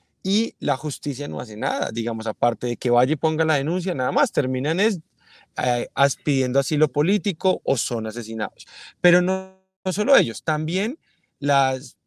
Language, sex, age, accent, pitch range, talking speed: Spanish, male, 30-49, Colombian, 140-195 Hz, 165 wpm